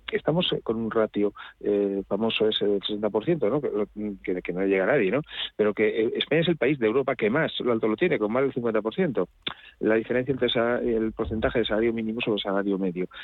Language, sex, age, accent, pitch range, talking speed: Spanish, male, 40-59, Spanish, 105-125 Hz, 220 wpm